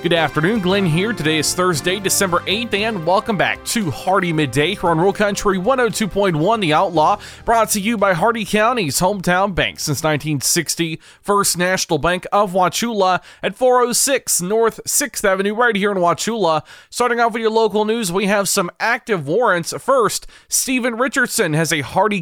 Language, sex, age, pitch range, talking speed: English, male, 30-49, 155-210 Hz, 170 wpm